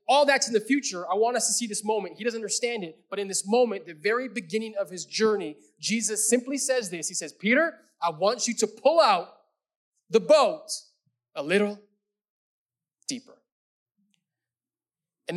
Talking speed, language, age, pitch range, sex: 175 wpm, English, 20-39, 155-235 Hz, male